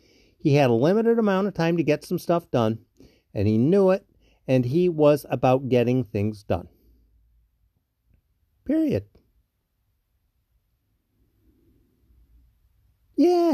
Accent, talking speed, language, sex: American, 110 wpm, English, male